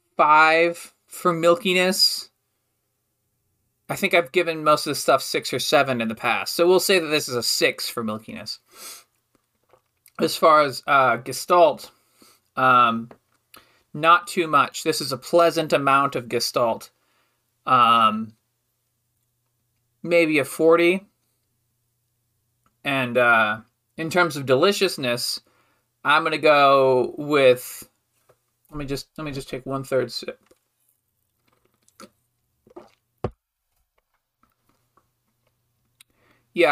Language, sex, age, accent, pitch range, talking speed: English, male, 30-49, American, 120-170 Hz, 110 wpm